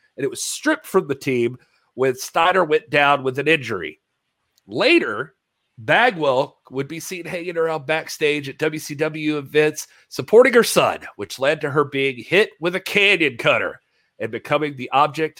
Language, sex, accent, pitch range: English, male, American, 130-195 Hz